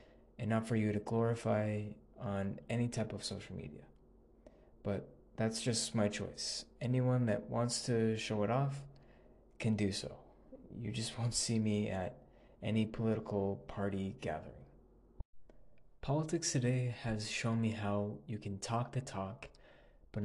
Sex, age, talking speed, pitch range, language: male, 20-39, 145 wpm, 105-125 Hz, English